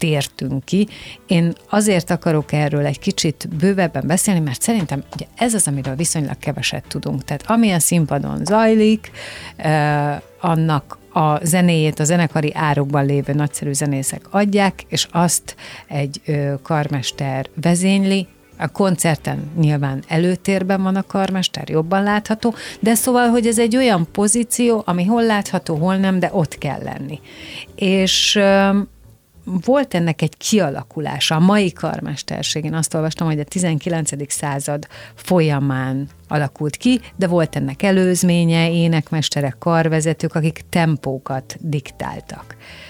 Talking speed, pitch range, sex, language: 125 wpm, 145-190 Hz, female, Hungarian